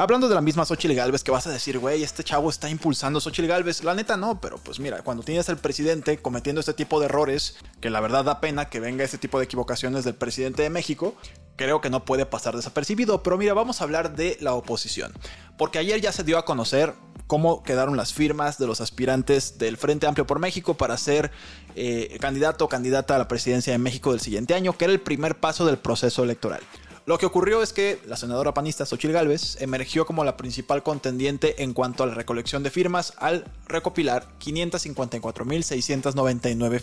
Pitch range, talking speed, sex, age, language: 130-160 Hz, 205 wpm, male, 20-39, Spanish